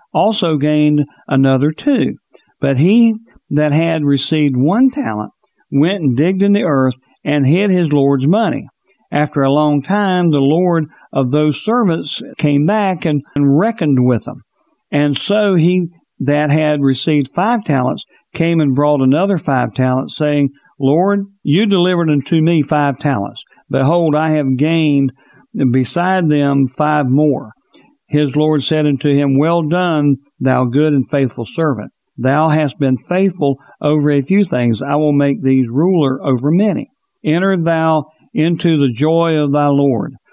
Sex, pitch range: male, 135-165 Hz